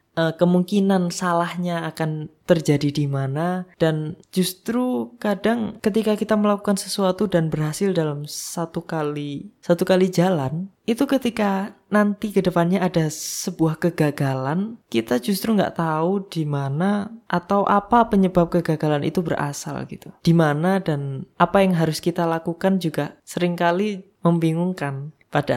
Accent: native